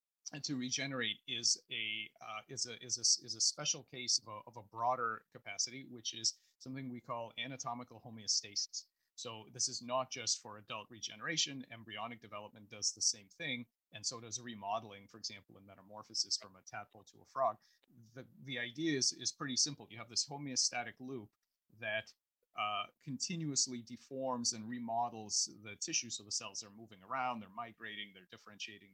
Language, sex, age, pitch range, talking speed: English, male, 30-49, 110-130 Hz, 175 wpm